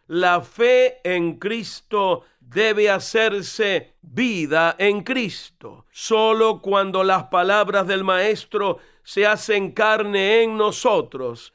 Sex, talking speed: male, 105 wpm